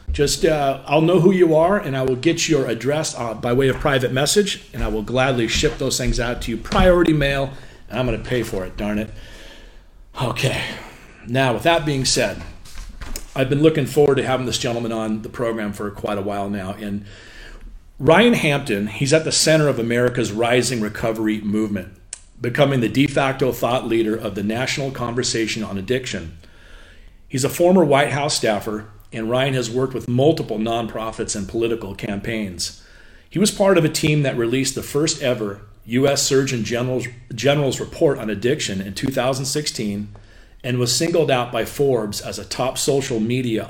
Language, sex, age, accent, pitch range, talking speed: English, male, 40-59, American, 105-140 Hz, 185 wpm